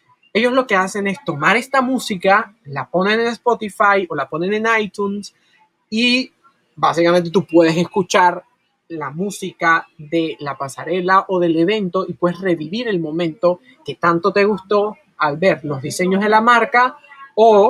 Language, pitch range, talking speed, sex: Spanish, 175-220 Hz, 160 wpm, male